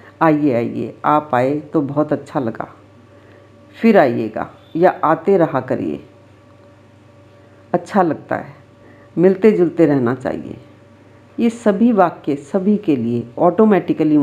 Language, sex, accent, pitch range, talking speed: Hindi, female, native, 115-175 Hz, 120 wpm